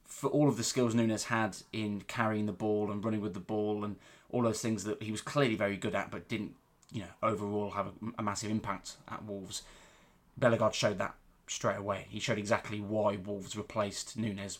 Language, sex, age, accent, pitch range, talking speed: English, male, 20-39, British, 105-115 Hz, 210 wpm